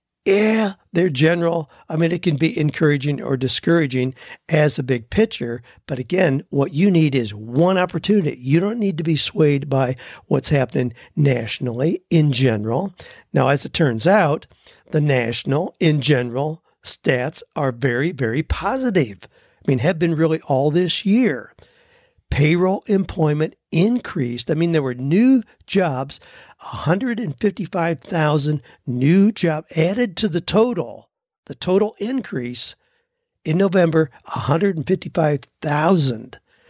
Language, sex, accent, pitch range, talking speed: English, male, American, 140-185 Hz, 130 wpm